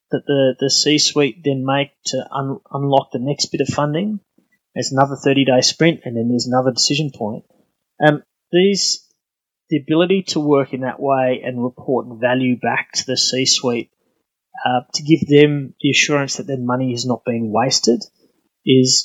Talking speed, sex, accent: 175 wpm, male, Australian